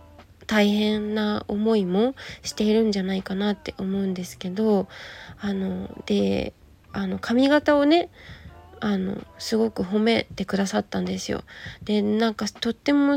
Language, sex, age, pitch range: Japanese, female, 20-39, 190-245 Hz